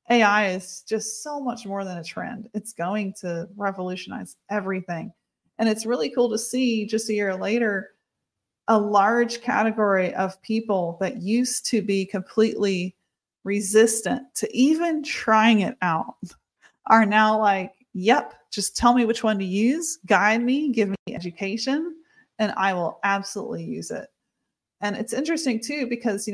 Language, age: English, 30-49